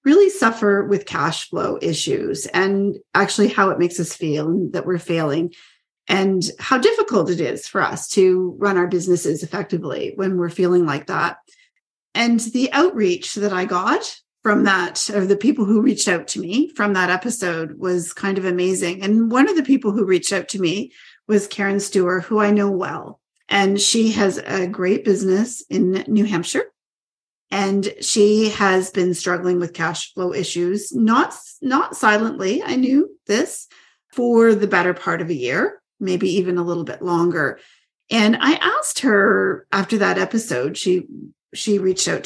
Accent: American